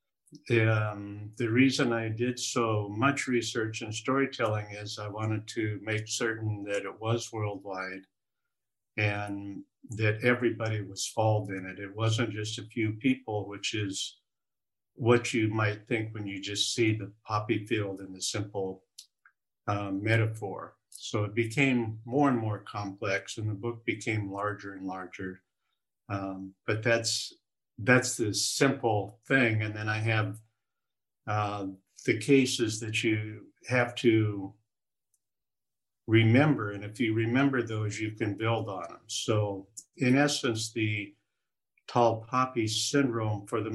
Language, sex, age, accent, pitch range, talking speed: English, male, 50-69, American, 105-120 Hz, 145 wpm